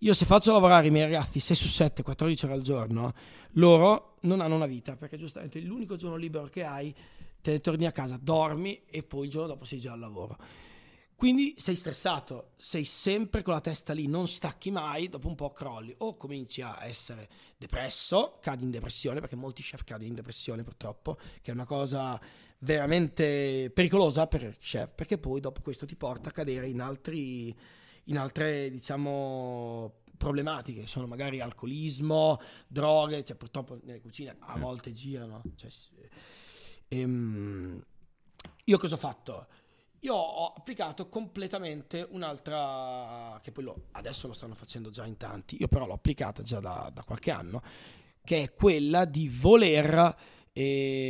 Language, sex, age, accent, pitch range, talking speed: Italian, male, 30-49, native, 125-160 Hz, 170 wpm